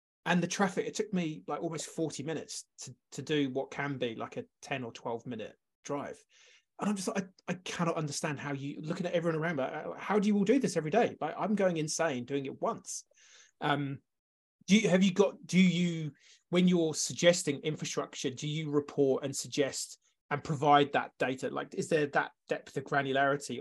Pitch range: 140-175 Hz